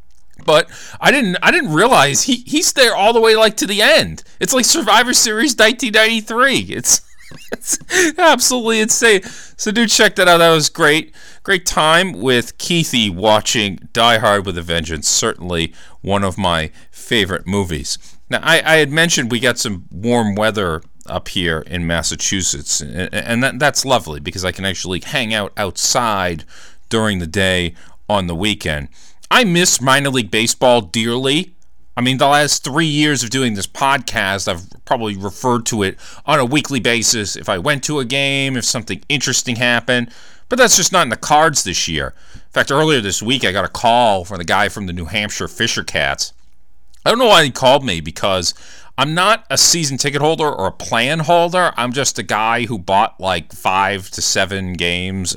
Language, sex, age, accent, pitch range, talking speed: English, male, 40-59, American, 90-145 Hz, 185 wpm